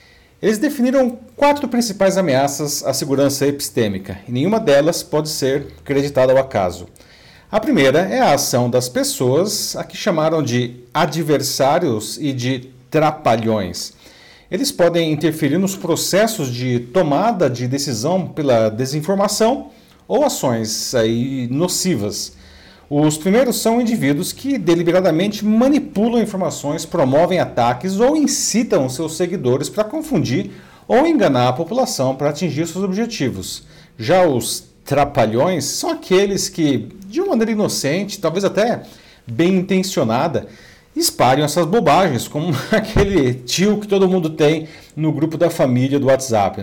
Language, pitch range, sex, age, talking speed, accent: Portuguese, 130-195 Hz, male, 50-69, 125 wpm, Brazilian